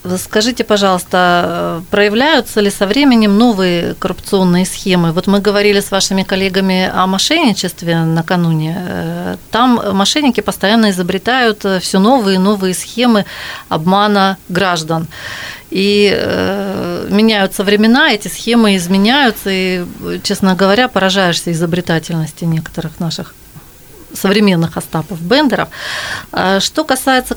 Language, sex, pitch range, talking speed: Russian, female, 175-215 Hz, 105 wpm